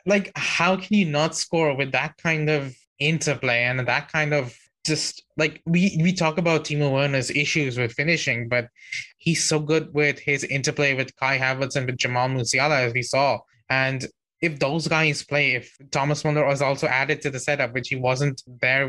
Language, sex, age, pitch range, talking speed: English, male, 20-39, 130-155 Hz, 195 wpm